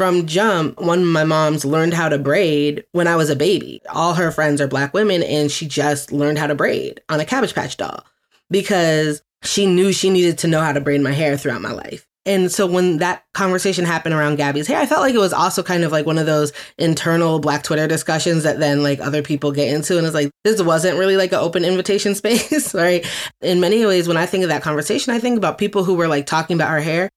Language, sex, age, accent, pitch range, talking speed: English, female, 20-39, American, 150-185 Hz, 250 wpm